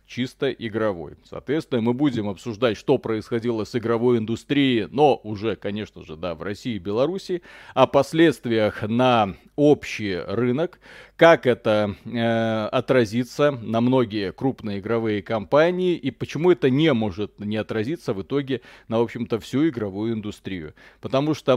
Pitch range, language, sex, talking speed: 110-140 Hz, Russian, male, 135 wpm